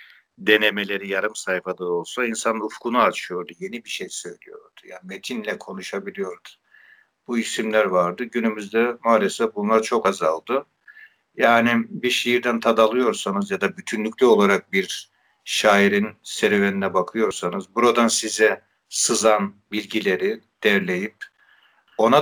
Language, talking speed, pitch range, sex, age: Turkish, 110 wpm, 100-125 Hz, male, 60-79